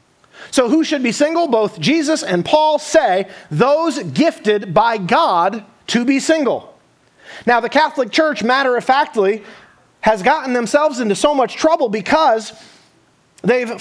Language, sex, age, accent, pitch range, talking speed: English, male, 30-49, American, 195-275 Hz, 145 wpm